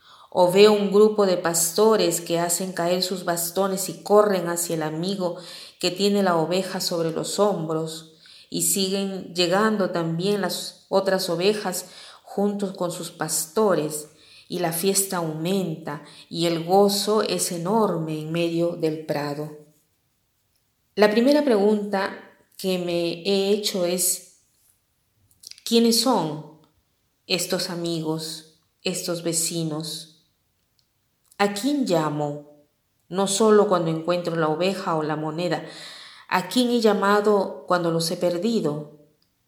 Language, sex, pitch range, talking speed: Spanish, female, 160-195 Hz, 125 wpm